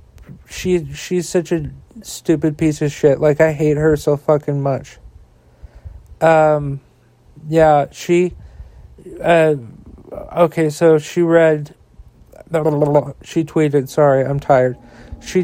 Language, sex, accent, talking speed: English, male, American, 130 wpm